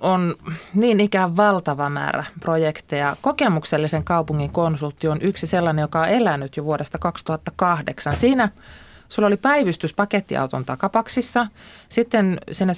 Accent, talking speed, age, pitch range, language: native, 120 wpm, 20-39, 150-185 Hz, Finnish